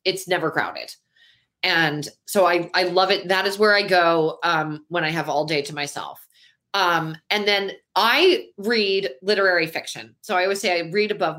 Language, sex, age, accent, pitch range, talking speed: English, female, 30-49, American, 160-195 Hz, 190 wpm